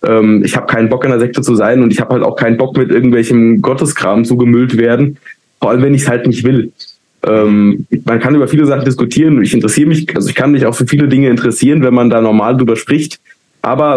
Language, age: German, 20-39